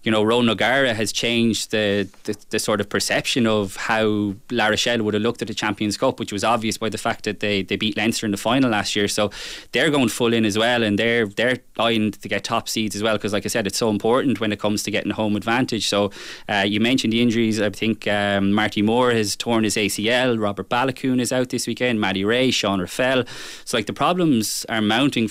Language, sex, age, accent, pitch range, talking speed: English, male, 20-39, Irish, 105-120 Hz, 240 wpm